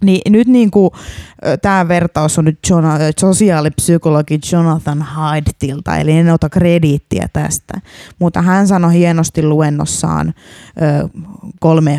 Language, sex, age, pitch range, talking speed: Finnish, female, 20-39, 155-190 Hz, 110 wpm